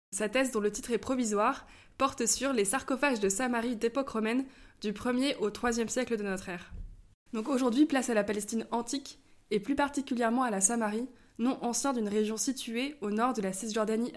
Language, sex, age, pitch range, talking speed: French, female, 20-39, 210-250 Hz, 195 wpm